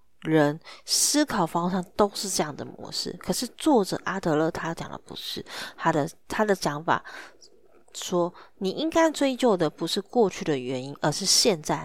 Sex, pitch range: female, 160-215 Hz